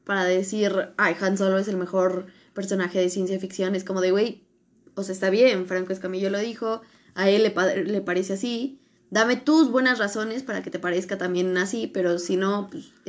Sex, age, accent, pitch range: female, 20-39, Mexican, 185-210 Hz